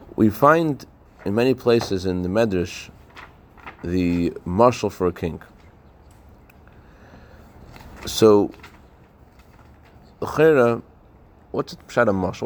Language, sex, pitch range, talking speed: English, male, 95-115 Hz, 85 wpm